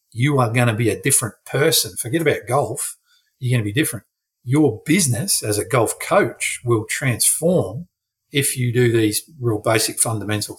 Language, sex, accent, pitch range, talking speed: English, male, Australian, 110-125 Hz, 175 wpm